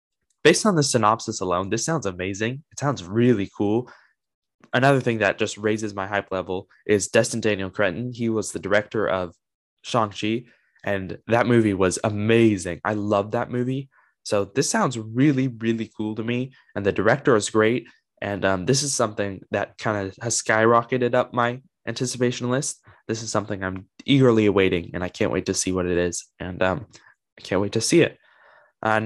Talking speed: 185 wpm